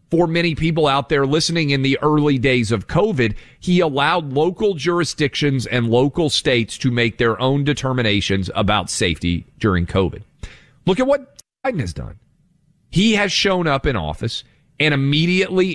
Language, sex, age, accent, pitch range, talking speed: English, male, 40-59, American, 110-155 Hz, 160 wpm